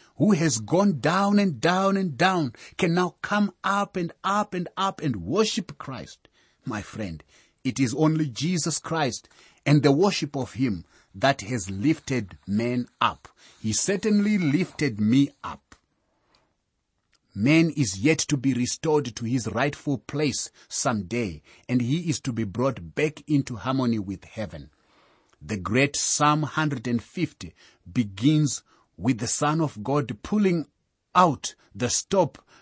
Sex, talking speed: male, 140 wpm